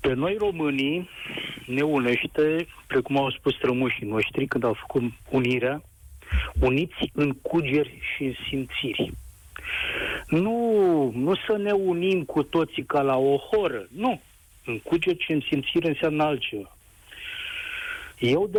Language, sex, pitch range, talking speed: Romanian, male, 130-190 Hz, 130 wpm